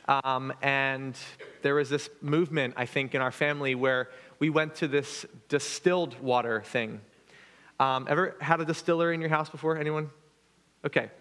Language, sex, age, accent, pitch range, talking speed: English, male, 30-49, American, 140-170 Hz, 160 wpm